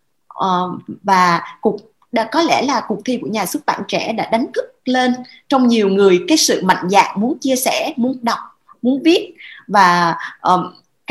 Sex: female